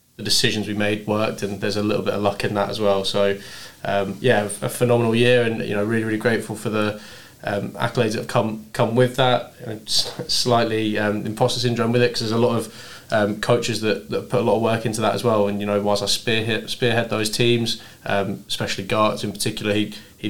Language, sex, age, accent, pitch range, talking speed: English, male, 20-39, British, 100-110 Hz, 235 wpm